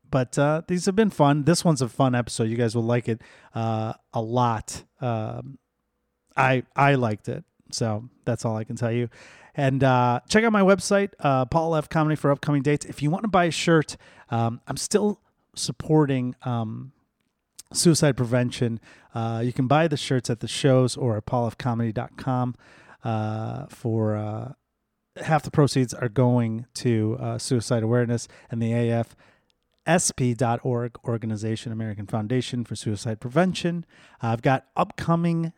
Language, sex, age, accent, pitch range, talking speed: English, male, 30-49, American, 115-145 Hz, 160 wpm